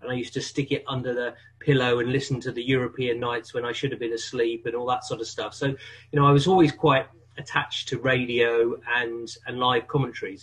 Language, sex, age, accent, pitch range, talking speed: English, male, 30-49, British, 120-140 Hz, 235 wpm